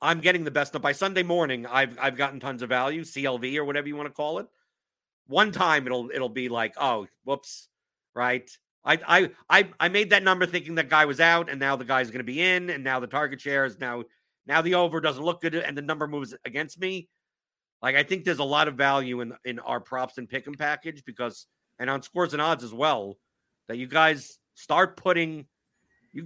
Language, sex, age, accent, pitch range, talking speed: English, male, 50-69, American, 130-175 Hz, 230 wpm